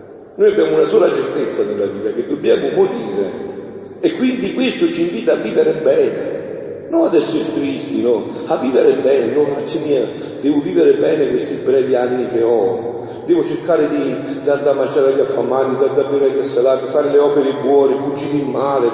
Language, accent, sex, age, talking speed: Italian, native, male, 50-69, 185 wpm